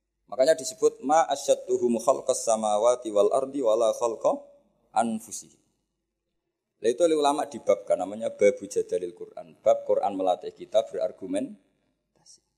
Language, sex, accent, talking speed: Indonesian, male, native, 105 wpm